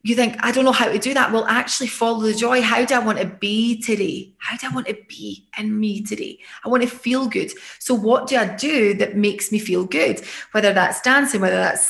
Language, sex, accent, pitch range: English, female, British, 205-240 Hz